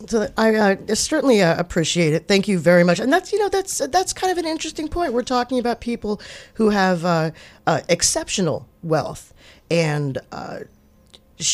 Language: English